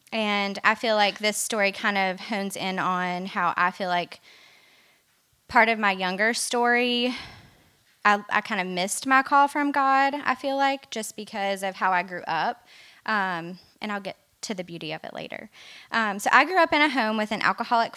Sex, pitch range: female, 190-230 Hz